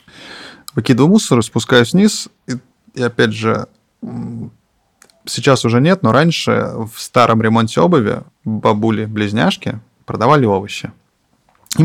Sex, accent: male, native